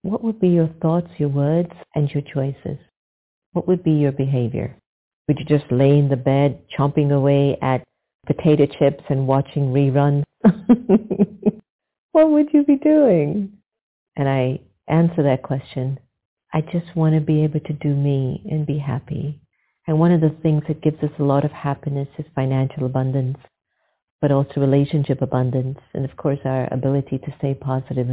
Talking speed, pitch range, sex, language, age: 170 wpm, 130-155 Hz, female, English, 50-69